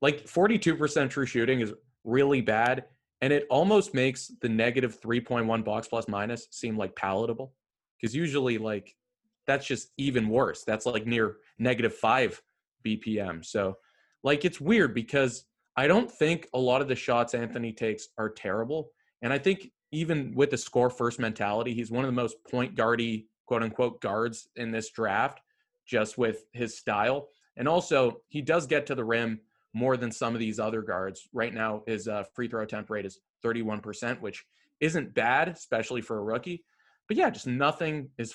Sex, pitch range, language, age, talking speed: male, 110-130 Hz, English, 20-39, 175 wpm